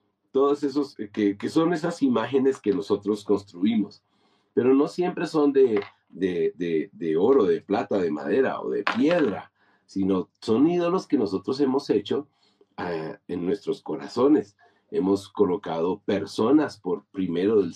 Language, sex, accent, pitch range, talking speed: Spanish, male, Mexican, 100-145 Hz, 145 wpm